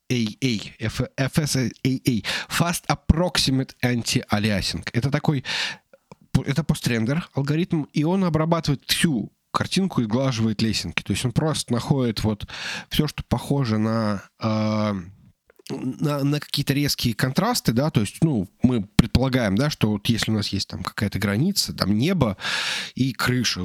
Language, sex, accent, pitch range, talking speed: Russian, male, native, 115-145 Hz, 140 wpm